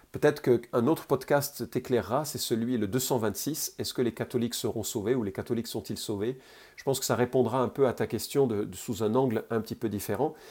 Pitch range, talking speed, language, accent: 115-155 Hz, 210 wpm, French, French